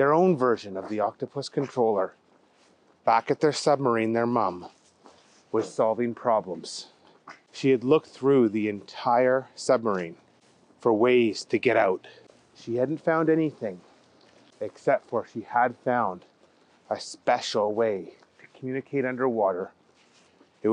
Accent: American